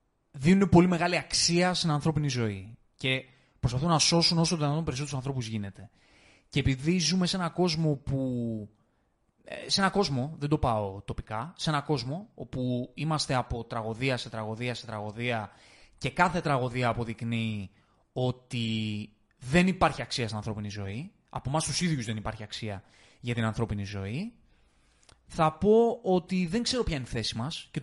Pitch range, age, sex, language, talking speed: 115-155 Hz, 20-39, male, Greek, 165 wpm